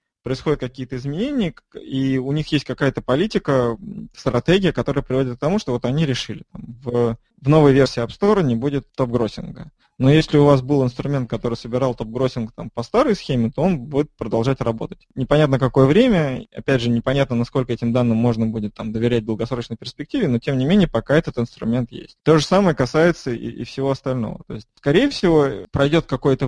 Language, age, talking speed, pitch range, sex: Russian, 20-39, 190 wpm, 120-145 Hz, male